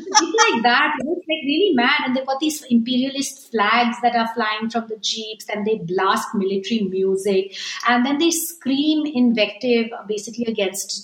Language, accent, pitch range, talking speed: English, Indian, 195-245 Hz, 165 wpm